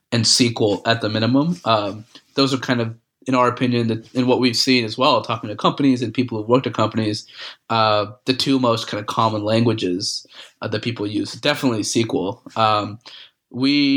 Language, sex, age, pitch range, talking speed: English, male, 20-39, 110-130 Hz, 195 wpm